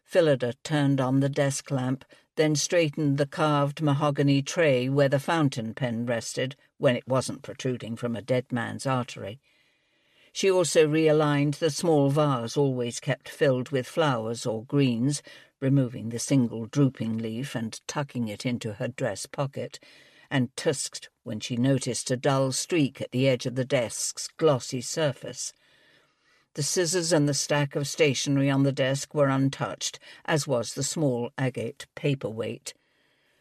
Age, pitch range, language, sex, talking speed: 60-79, 125-150 Hz, English, female, 145 wpm